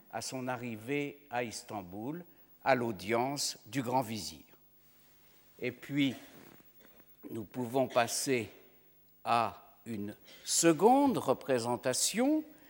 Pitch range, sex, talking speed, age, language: 115-155 Hz, male, 90 wpm, 60-79, French